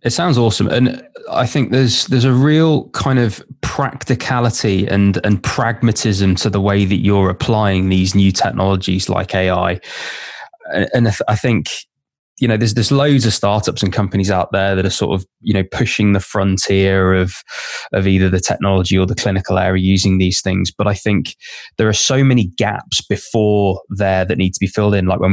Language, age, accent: English, 20-39, British